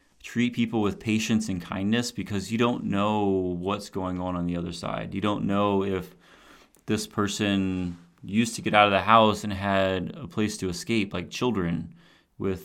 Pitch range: 90-105 Hz